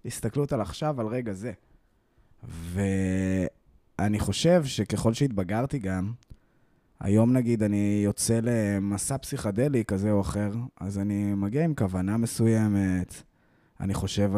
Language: Hebrew